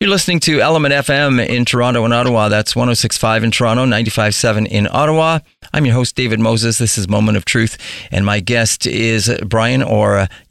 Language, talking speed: English, 190 wpm